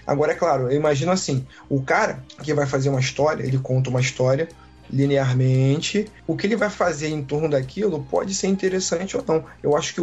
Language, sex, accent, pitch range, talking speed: Portuguese, male, Brazilian, 140-190 Hz, 205 wpm